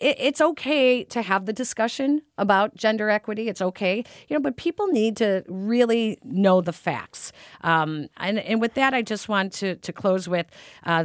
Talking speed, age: 185 wpm, 40-59